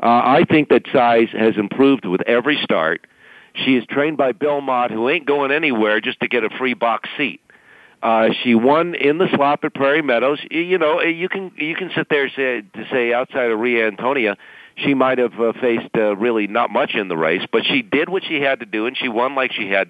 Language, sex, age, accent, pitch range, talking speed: English, male, 50-69, American, 110-140 Hz, 230 wpm